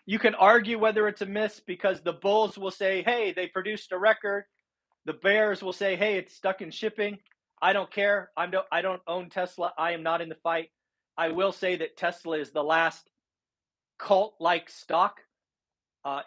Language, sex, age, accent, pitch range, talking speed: English, male, 40-59, American, 165-205 Hz, 195 wpm